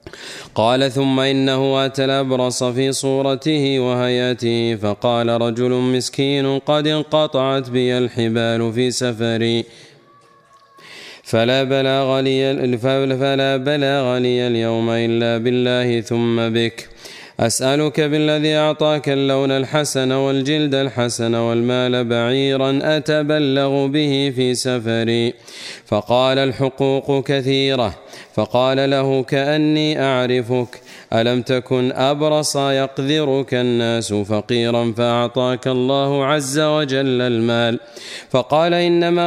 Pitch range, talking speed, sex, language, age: 120-140 Hz, 90 wpm, male, Arabic, 30-49